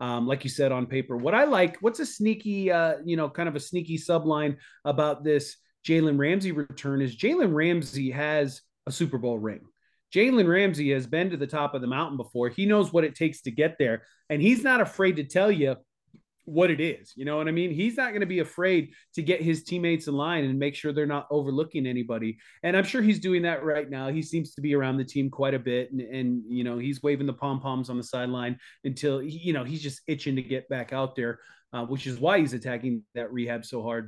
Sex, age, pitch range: male, 30-49, 130-170 Hz